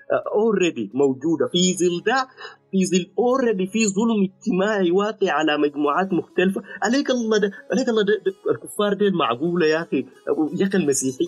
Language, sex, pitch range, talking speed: Arabic, male, 145-205 Hz, 160 wpm